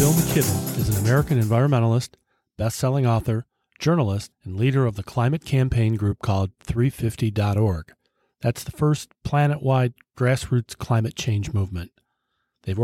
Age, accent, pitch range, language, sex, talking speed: 40-59, American, 105-130 Hz, English, male, 125 wpm